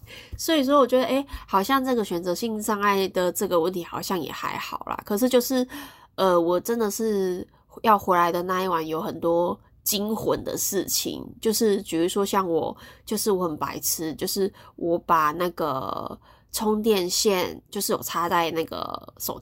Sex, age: female, 20-39